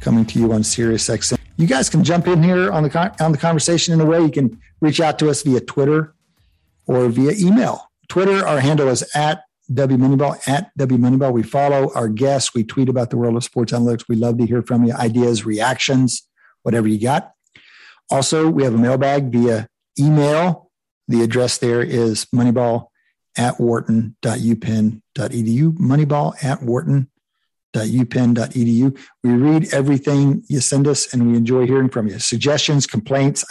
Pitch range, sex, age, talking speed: 115-140 Hz, male, 50-69, 170 wpm